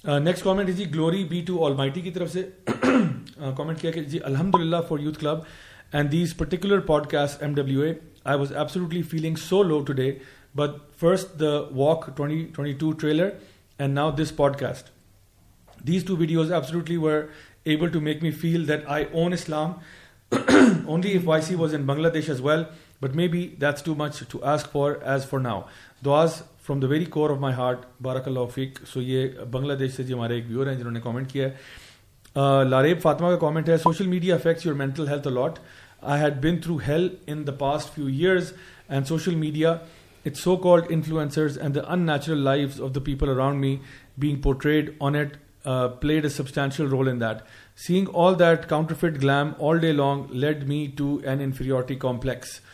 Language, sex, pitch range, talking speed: Urdu, male, 135-165 Hz, 185 wpm